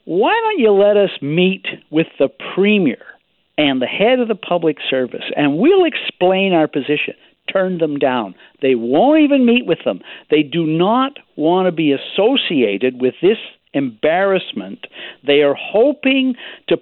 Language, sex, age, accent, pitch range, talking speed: English, male, 60-79, American, 130-200 Hz, 155 wpm